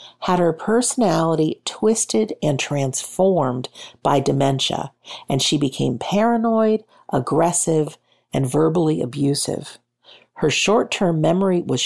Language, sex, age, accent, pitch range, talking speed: English, female, 50-69, American, 145-195 Hz, 100 wpm